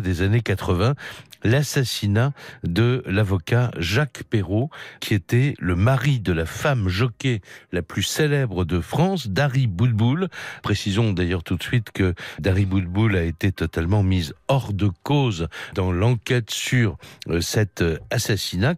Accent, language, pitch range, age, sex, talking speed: French, French, 95-135 Hz, 60-79, male, 135 wpm